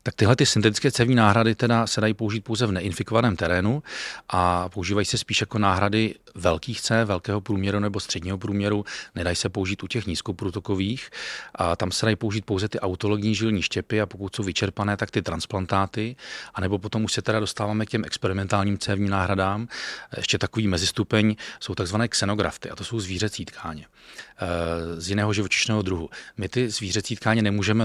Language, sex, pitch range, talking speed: Czech, male, 95-110 Hz, 175 wpm